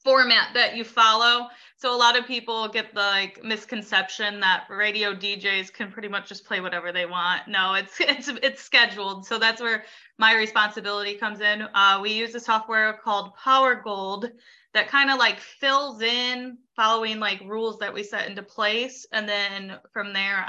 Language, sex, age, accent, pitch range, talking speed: English, female, 20-39, American, 195-235 Hz, 180 wpm